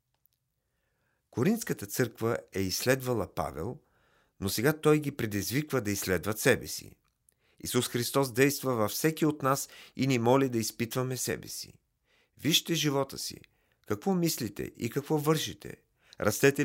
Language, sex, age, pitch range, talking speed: Bulgarian, male, 50-69, 105-145 Hz, 135 wpm